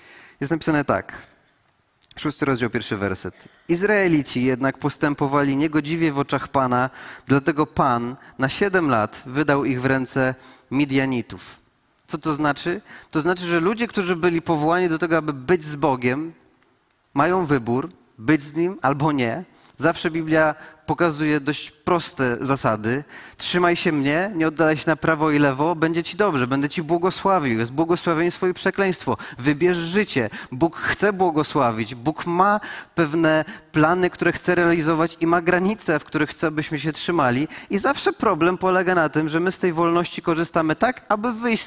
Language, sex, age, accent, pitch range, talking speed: Polish, male, 30-49, native, 145-185 Hz, 155 wpm